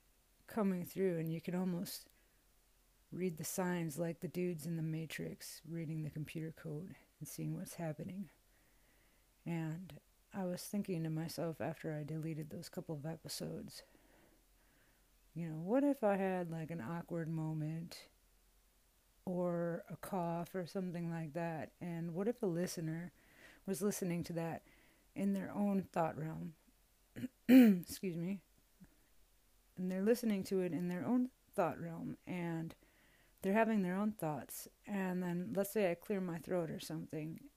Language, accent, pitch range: English, American, 160-190 Hz